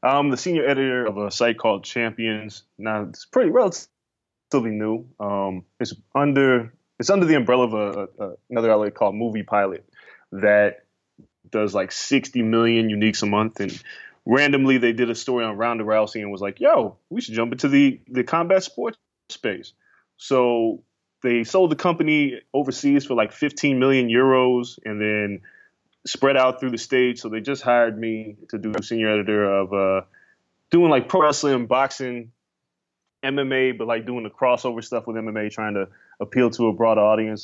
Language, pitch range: English, 105-130 Hz